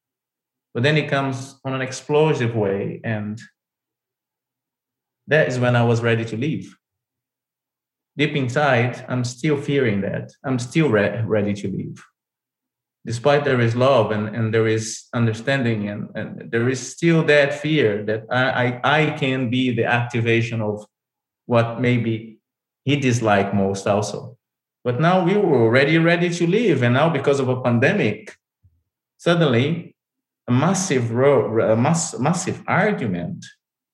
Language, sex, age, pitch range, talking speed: English, male, 30-49, 115-150 Hz, 145 wpm